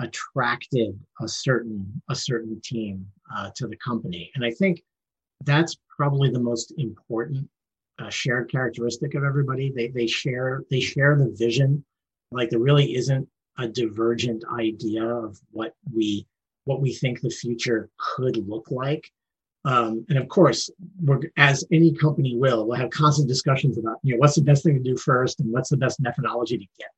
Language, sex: English, male